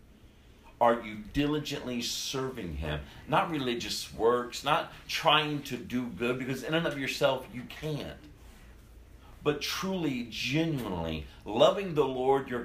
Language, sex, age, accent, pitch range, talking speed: English, male, 50-69, American, 100-140 Hz, 130 wpm